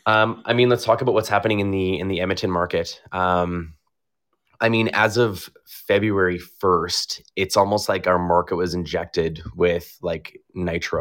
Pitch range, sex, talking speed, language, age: 90-105 Hz, male, 170 wpm, English, 20-39